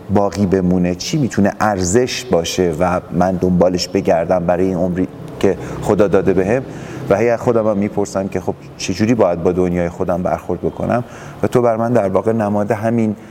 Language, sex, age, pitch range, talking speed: Persian, male, 30-49, 90-110 Hz, 180 wpm